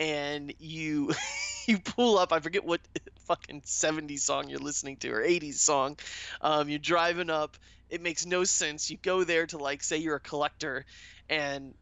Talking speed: 180 wpm